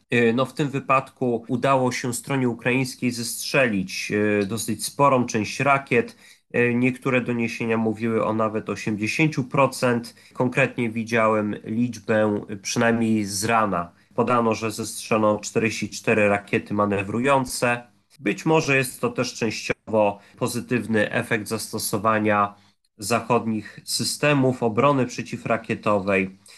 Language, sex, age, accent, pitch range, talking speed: Polish, male, 30-49, native, 110-125 Hz, 100 wpm